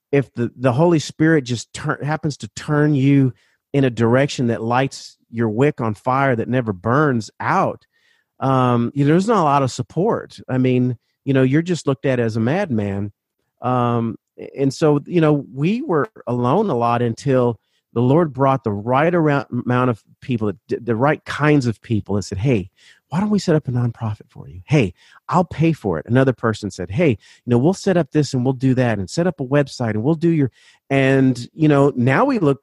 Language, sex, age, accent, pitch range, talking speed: English, male, 40-59, American, 115-145 Hz, 205 wpm